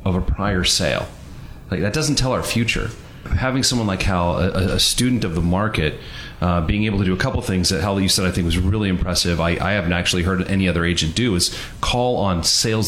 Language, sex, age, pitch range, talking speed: English, male, 30-49, 90-115 Hz, 240 wpm